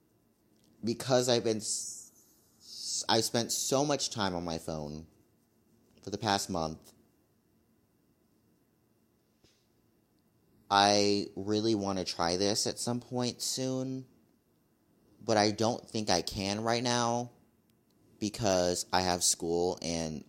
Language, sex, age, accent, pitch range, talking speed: English, male, 30-49, American, 85-110 Hz, 110 wpm